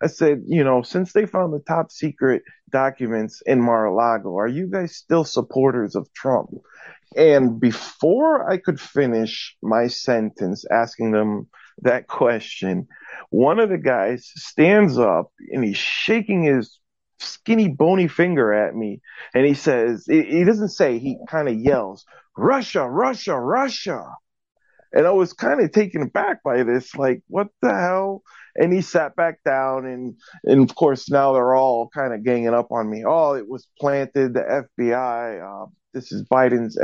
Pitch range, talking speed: 120-185 Hz, 165 wpm